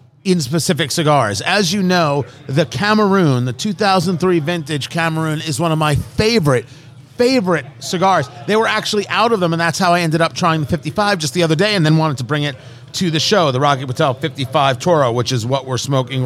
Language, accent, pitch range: English, American, 140-200 Hz